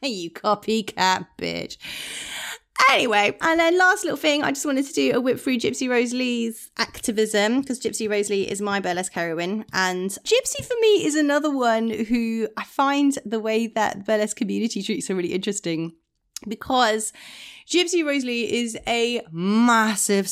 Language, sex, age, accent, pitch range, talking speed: English, female, 30-49, British, 170-230 Hz, 155 wpm